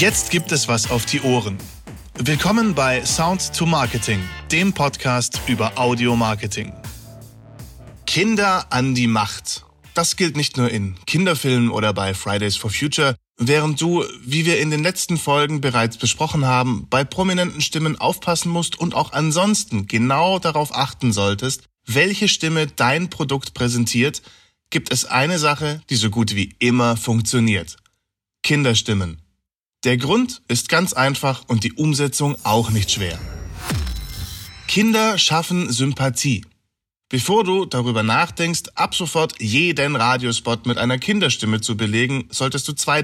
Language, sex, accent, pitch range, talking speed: German, male, German, 110-155 Hz, 140 wpm